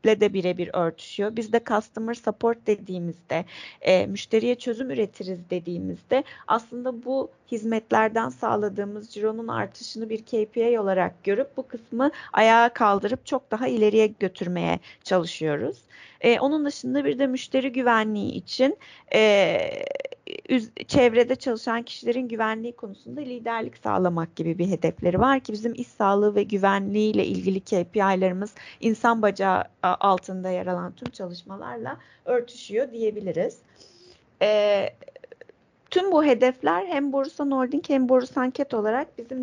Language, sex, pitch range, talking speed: Turkish, female, 195-245 Hz, 125 wpm